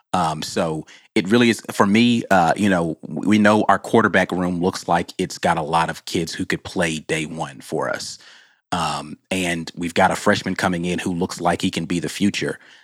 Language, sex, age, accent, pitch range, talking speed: English, male, 30-49, American, 85-100 Hz, 215 wpm